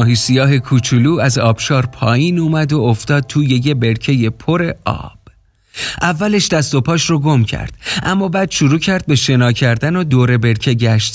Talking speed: 170 wpm